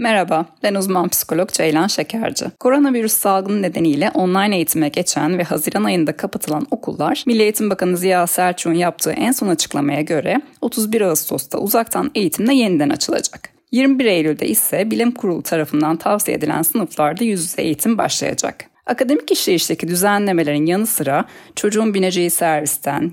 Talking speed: 140 wpm